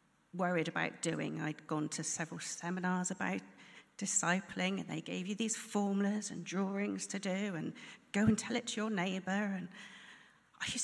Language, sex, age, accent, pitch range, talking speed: English, female, 40-59, British, 160-210 Hz, 170 wpm